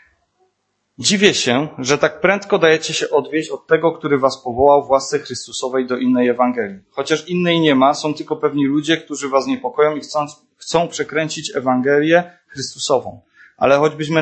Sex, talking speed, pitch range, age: male, 160 wpm, 130-160 Hz, 20-39